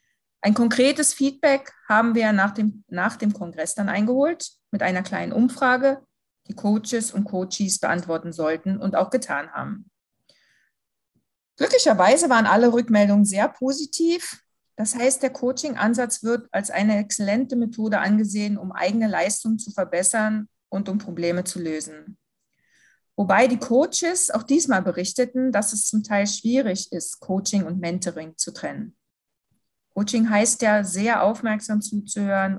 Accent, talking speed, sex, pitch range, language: German, 135 wpm, female, 185-230 Hz, English